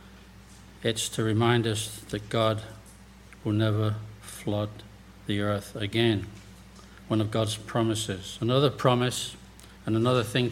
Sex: male